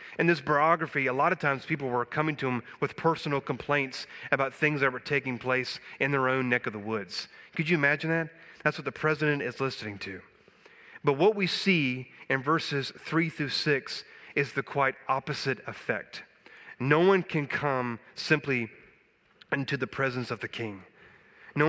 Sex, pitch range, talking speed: male, 125-160 Hz, 180 wpm